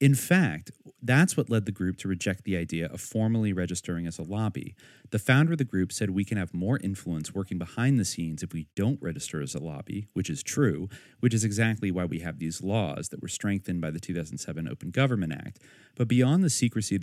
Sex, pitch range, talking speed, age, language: male, 90-125 Hz, 225 wpm, 30-49, English